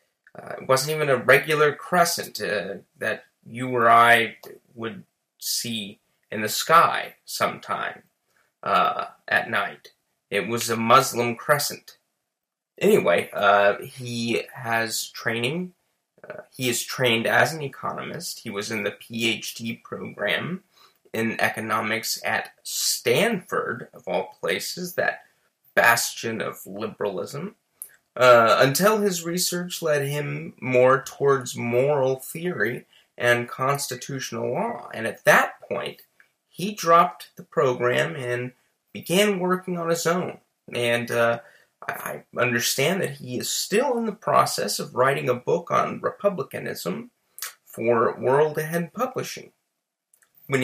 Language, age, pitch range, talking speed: English, 20-39, 115-155 Hz, 125 wpm